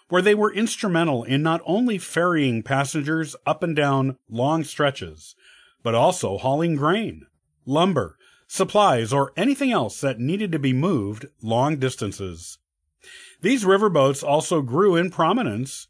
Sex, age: male, 50-69